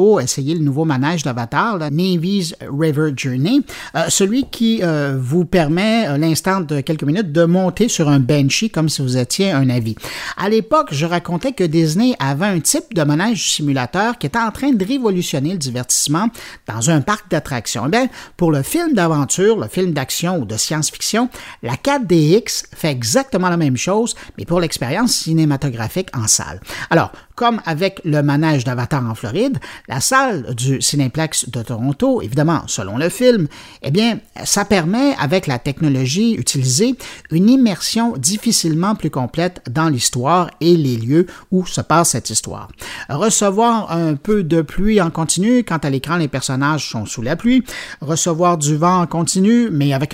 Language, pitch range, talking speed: French, 140-200 Hz, 170 wpm